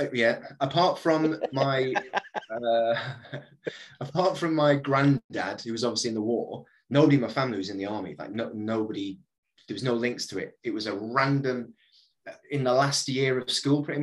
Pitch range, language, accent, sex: 115-150 Hz, English, British, male